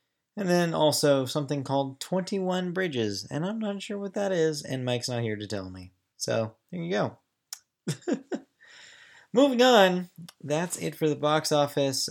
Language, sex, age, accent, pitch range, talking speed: English, male, 20-39, American, 110-155 Hz, 165 wpm